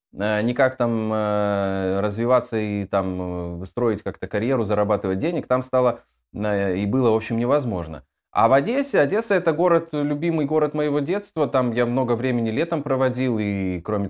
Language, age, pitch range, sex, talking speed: Russian, 20-39, 105-150 Hz, male, 150 wpm